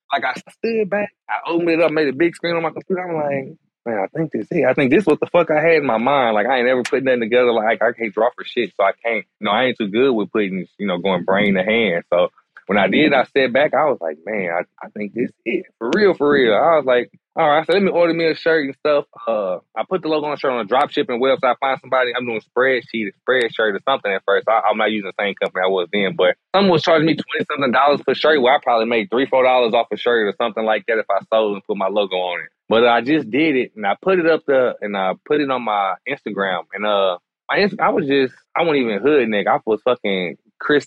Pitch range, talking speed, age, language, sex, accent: 110-150 Hz, 300 wpm, 20-39, English, male, American